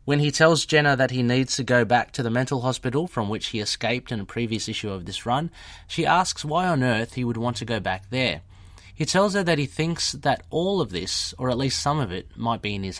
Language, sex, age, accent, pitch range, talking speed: English, male, 30-49, Australian, 105-140 Hz, 265 wpm